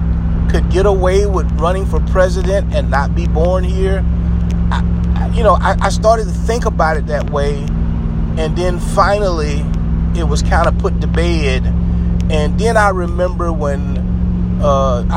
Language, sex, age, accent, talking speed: English, male, 30-49, American, 155 wpm